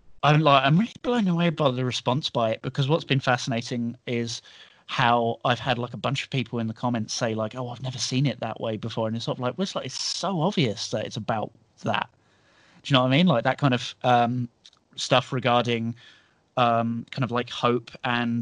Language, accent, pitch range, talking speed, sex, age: English, British, 120-135 Hz, 235 wpm, male, 30-49